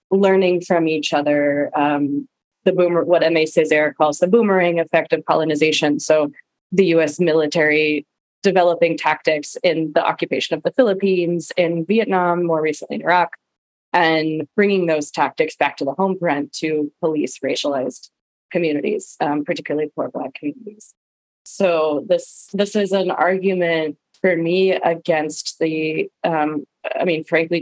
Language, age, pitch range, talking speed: English, 20-39, 155-180 Hz, 140 wpm